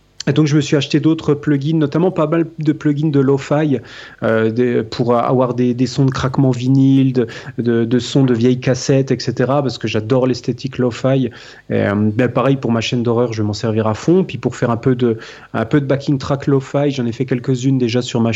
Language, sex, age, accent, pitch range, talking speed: French, male, 30-49, French, 125-150 Hz, 235 wpm